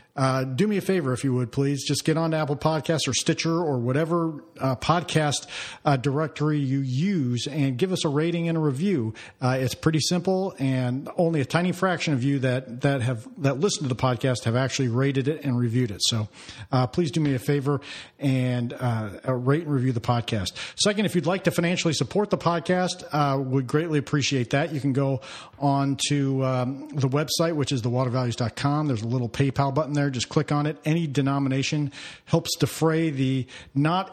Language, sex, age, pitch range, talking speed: English, male, 40-59, 130-155 Hz, 200 wpm